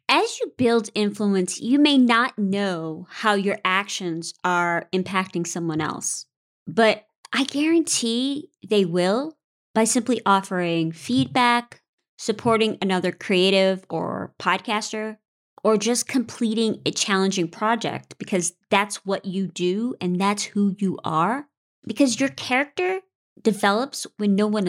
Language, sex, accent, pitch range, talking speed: English, female, American, 185-240 Hz, 125 wpm